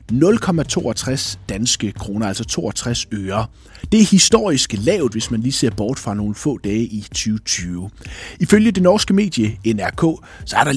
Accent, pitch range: native, 100-145 Hz